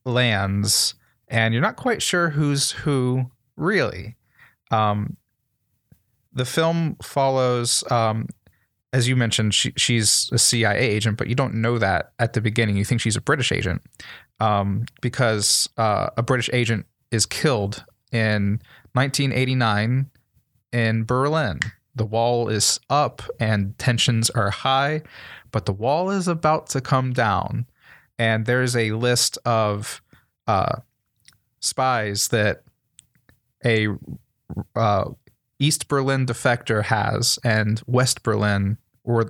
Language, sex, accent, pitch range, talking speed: English, male, American, 110-130 Hz, 125 wpm